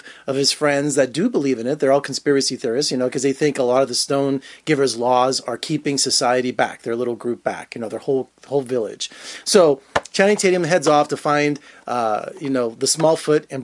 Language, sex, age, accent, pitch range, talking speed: English, male, 30-49, American, 135-170 Hz, 230 wpm